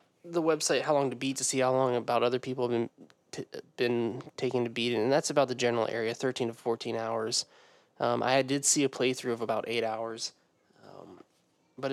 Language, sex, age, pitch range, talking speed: English, male, 20-39, 120-140 Hz, 210 wpm